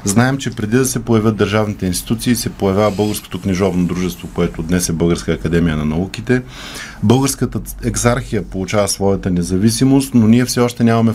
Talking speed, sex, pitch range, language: 160 wpm, male, 95-120 Hz, Bulgarian